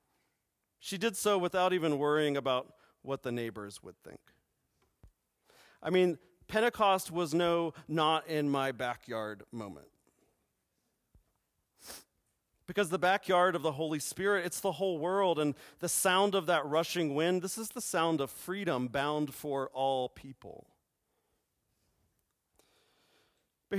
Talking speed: 130 wpm